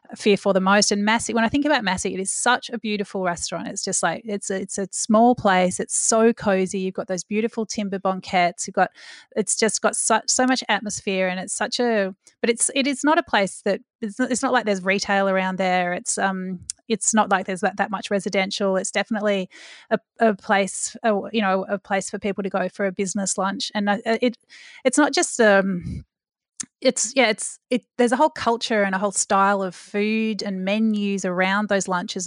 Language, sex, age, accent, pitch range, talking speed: English, female, 30-49, Australian, 190-225 Hz, 215 wpm